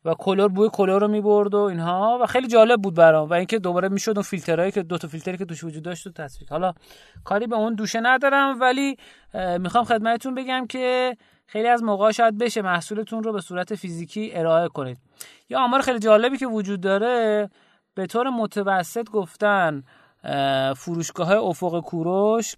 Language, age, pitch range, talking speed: Persian, 30-49, 160-225 Hz, 185 wpm